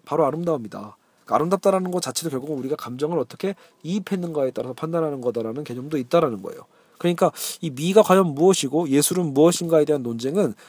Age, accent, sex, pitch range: 40-59, native, male, 135-190 Hz